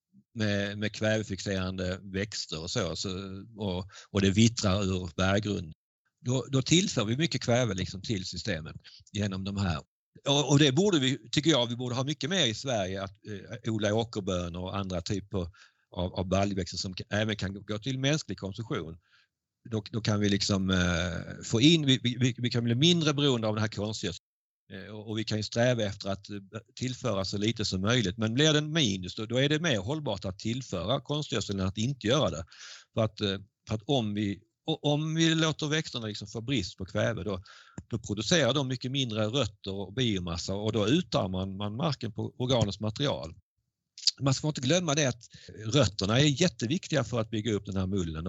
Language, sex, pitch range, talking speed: Swedish, male, 100-130 Hz, 195 wpm